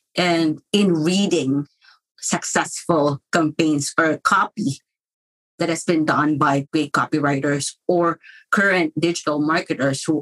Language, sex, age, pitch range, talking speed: English, female, 30-49, 150-180 Hz, 115 wpm